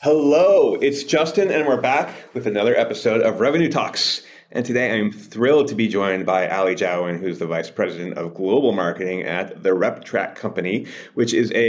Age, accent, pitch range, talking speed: 30-49, American, 95-120 Hz, 185 wpm